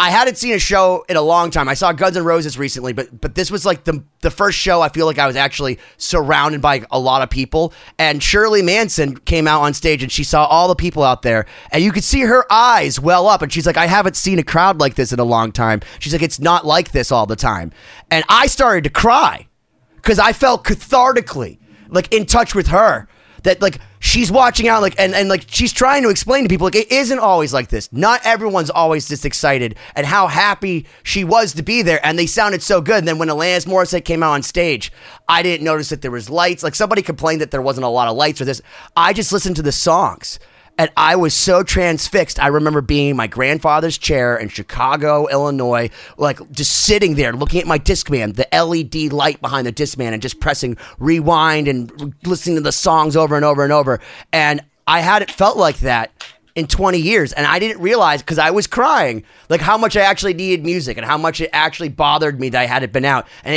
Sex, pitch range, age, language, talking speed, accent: male, 140-185 Hz, 30-49, English, 235 wpm, American